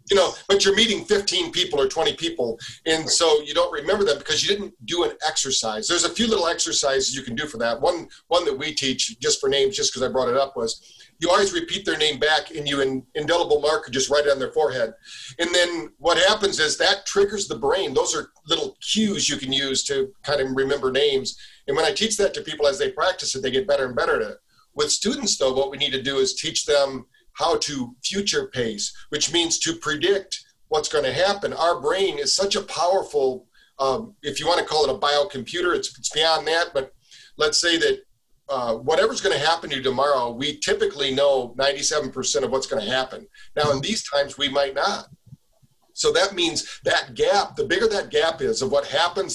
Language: English